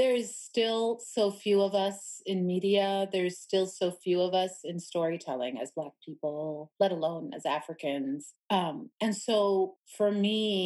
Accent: American